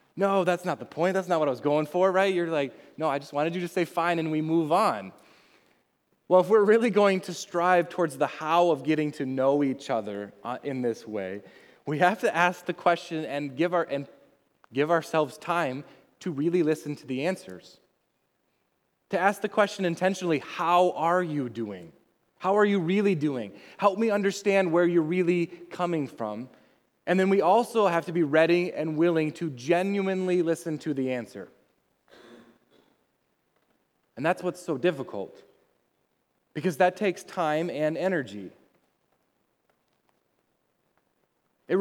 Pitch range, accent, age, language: 150-185 Hz, American, 20-39, English